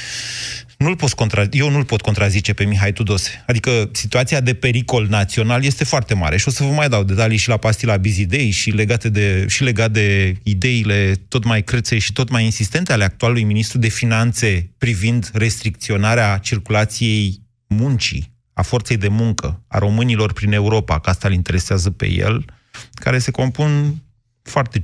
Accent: native